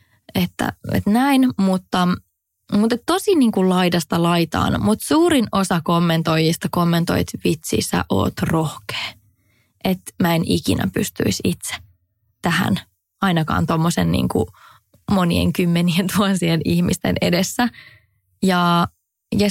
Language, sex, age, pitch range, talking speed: English, female, 20-39, 165-195 Hz, 100 wpm